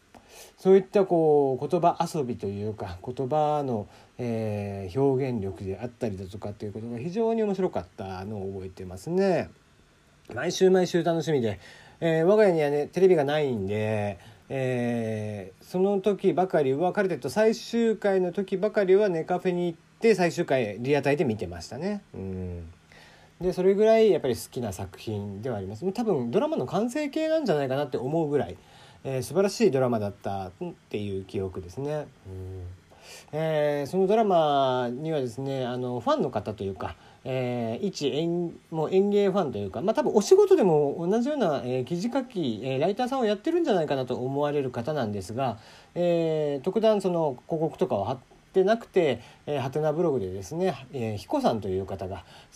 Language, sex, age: Japanese, male, 40-59